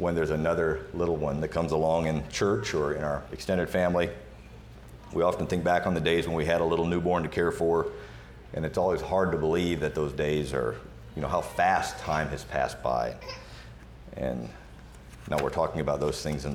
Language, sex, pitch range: English, male, 75-90 Hz